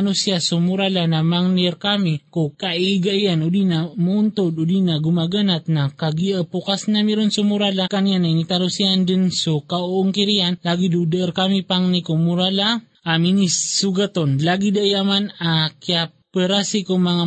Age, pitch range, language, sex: 20-39, 175-200 Hz, Filipino, male